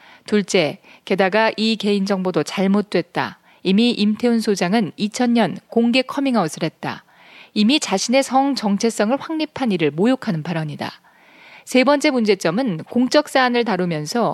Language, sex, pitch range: Korean, female, 185-245 Hz